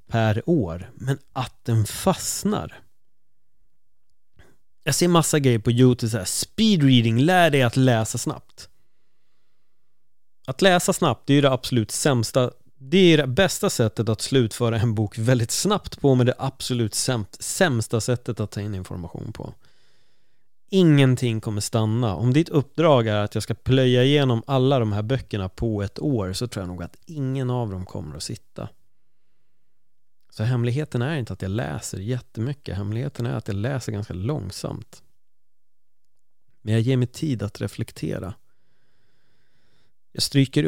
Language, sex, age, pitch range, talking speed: Swedish, male, 30-49, 105-130 Hz, 155 wpm